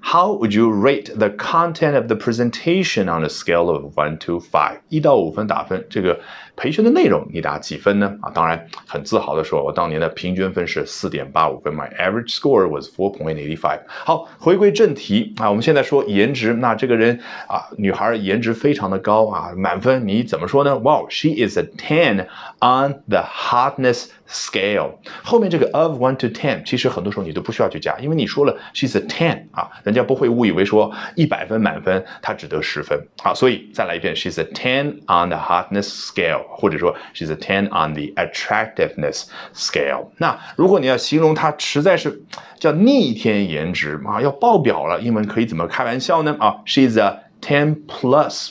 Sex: male